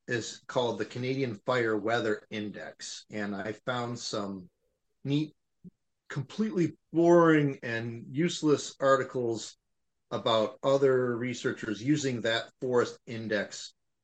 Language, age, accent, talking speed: English, 40-59, American, 105 wpm